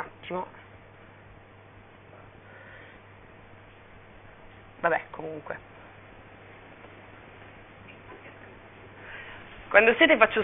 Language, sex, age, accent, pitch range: Italian, female, 30-49, native, 170-225 Hz